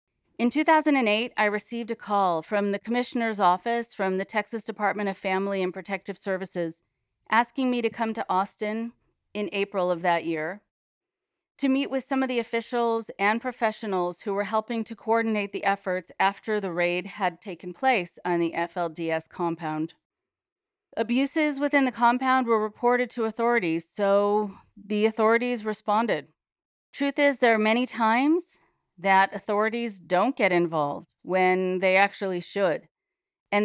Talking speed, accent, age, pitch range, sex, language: 150 wpm, American, 40-59, 190-240 Hz, female, English